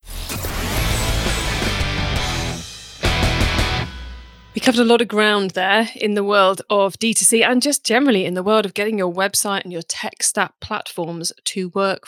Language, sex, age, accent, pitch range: English, female, 20-39, British, 170-215 Hz